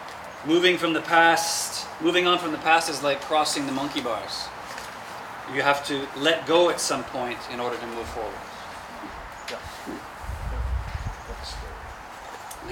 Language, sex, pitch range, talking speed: English, male, 135-165 Hz, 135 wpm